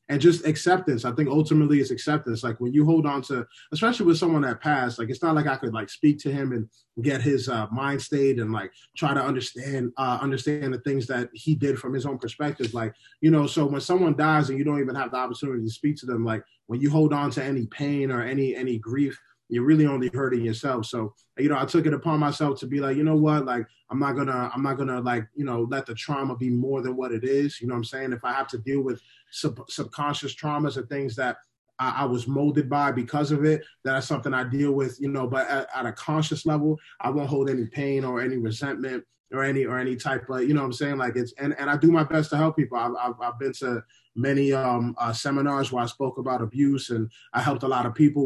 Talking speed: 260 wpm